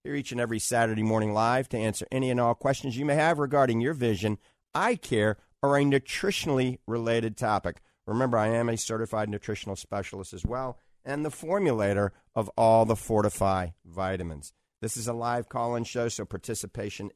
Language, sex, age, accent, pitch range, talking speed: English, male, 50-69, American, 100-130 Hz, 180 wpm